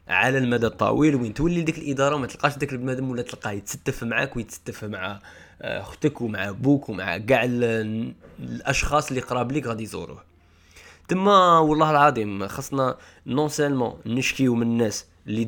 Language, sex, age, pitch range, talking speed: Arabic, male, 20-39, 105-140 Hz, 150 wpm